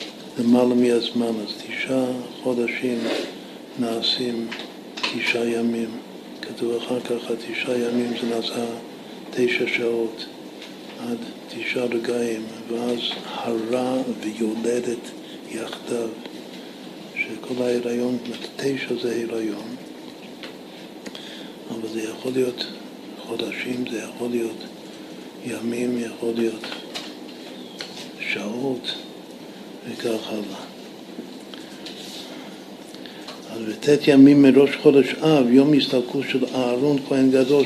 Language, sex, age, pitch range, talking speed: Hebrew, male, 60-79, 115-130 Hz, 90 wpm